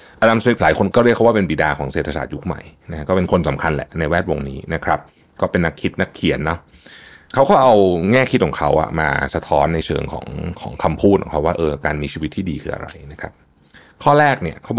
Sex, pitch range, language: male, 80-100 Hz, Thai